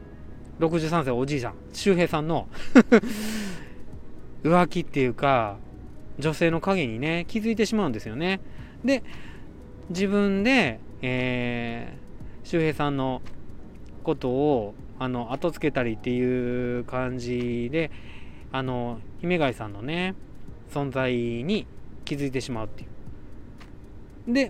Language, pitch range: Japanese, 115-170 Hz